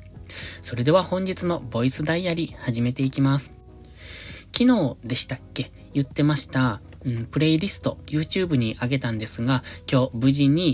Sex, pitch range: male, 110-145 Hz